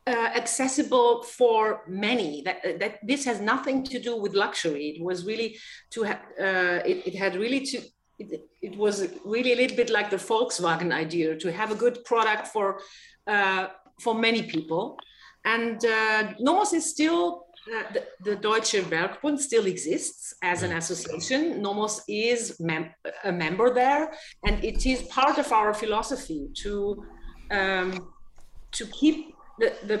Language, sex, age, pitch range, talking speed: English, female, 40-59, 185-245 Hz, 155 wpm